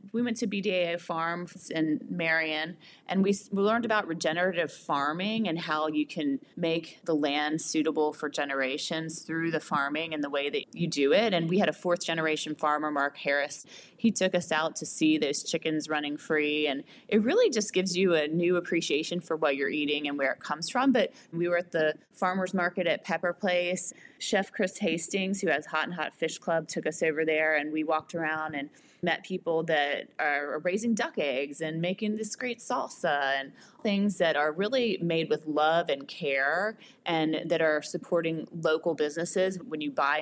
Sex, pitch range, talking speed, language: female, 155-195 Hz, 195 wpm, English